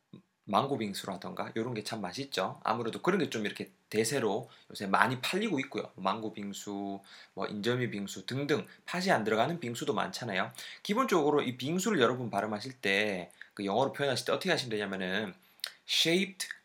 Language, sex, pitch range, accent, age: Korean, male, 105-150 Hz, native, 20-39